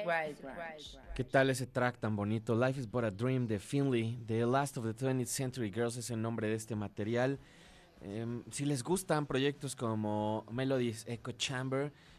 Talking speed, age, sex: 175 wpm, 20-39, male